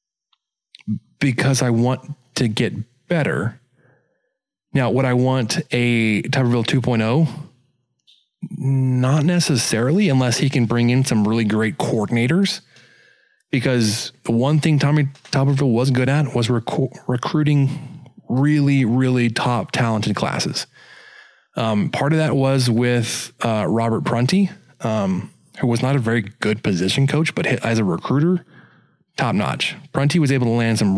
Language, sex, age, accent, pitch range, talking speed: English, male, 30-49, American, 120-145 Hz, 140 wpm